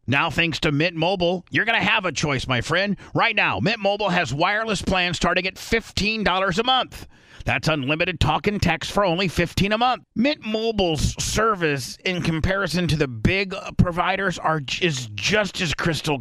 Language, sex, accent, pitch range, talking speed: English, male, American, 150-195 Hz, 180 wpm